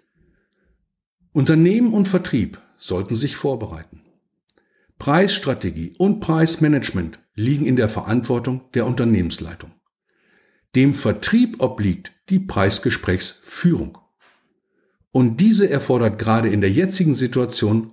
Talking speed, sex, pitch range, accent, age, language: 95 wpm, male, 105-170 Hz, German, 60-79, German